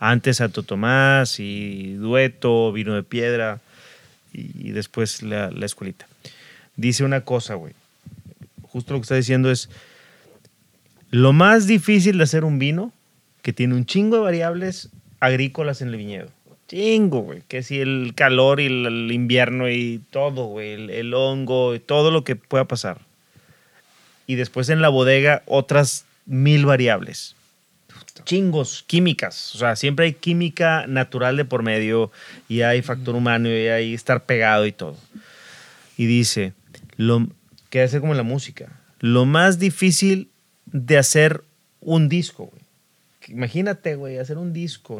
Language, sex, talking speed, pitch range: Spanish, male, 150 wpm, 120-155 Hz